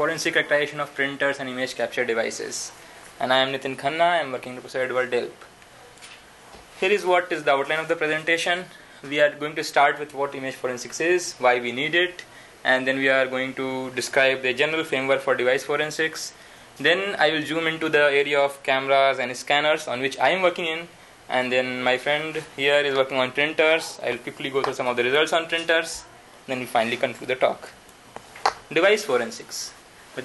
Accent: Indian